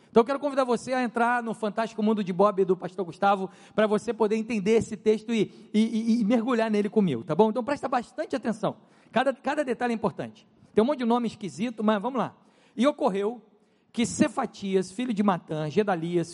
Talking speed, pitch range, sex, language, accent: 210 wpm, 185-235 Hz, male, Portuguese, Brazilian